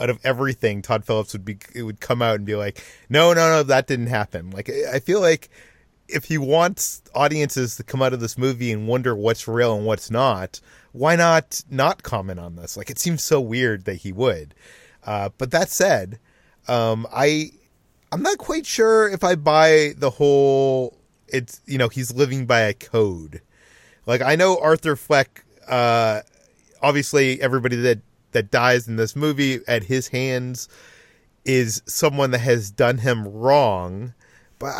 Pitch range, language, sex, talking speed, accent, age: 115-145 Hz, English, male, 180 wpm, American, 30-49